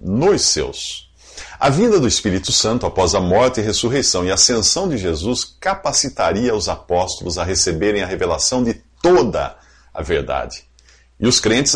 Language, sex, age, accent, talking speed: English, male, 50-69, Brazilian, 155 wpm